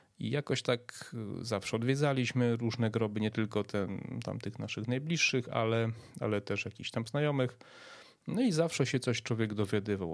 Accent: native